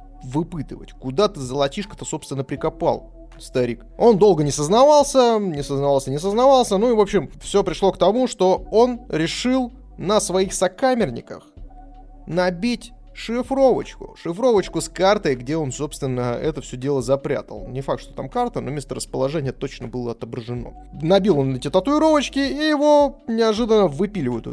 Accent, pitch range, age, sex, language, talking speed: native, 135-215 Hz, 20-39, male, Russian, 145 wpm